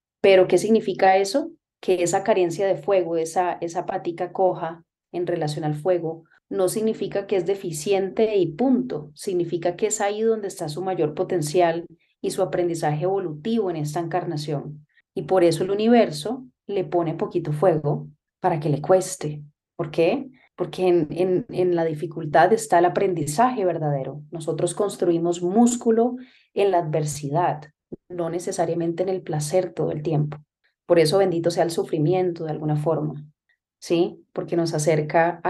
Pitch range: 160-185 Hz